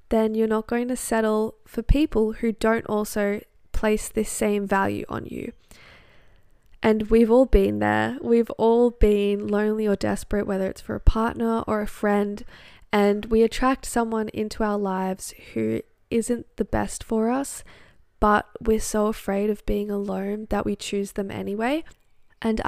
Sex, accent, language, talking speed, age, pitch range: female, Australian, English, 165 wpm, 10-29, 200-230 Hz